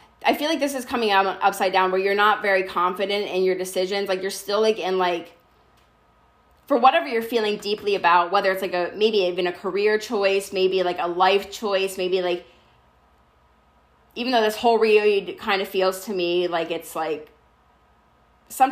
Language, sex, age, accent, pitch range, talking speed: English, female, 20-39, American, 180-210 Hz, 190 wpm